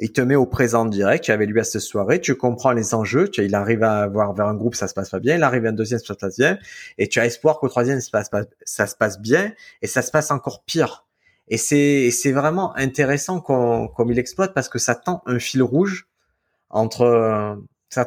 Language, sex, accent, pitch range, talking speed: French, male, French, 115-150 Hz, 245 wpm